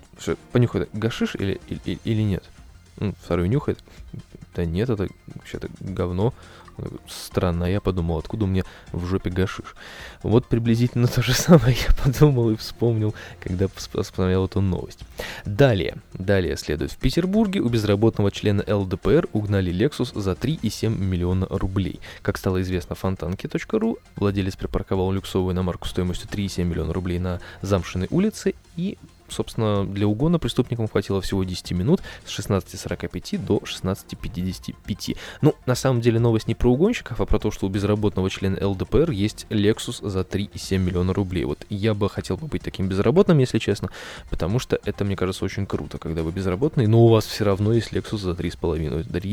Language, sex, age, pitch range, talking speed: Russian, male, 20-39, 90-110 Hz, 155 wpm